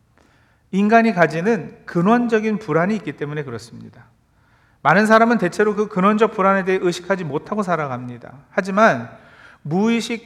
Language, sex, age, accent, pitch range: Korean, male, 40-59, native, 155-215 Hz